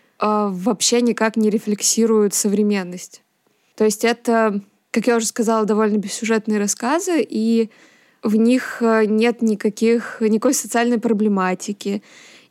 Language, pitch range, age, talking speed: Russian, 210-235 Hz, 20-39, 105 wpm